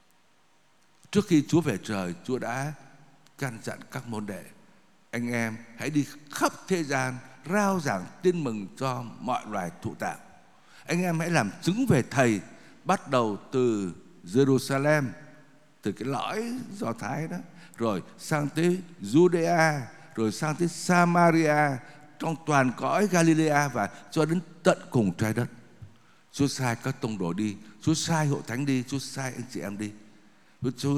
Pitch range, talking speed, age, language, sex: 125-170 Hz, 160 wpm, 60-79, Vietnamese, male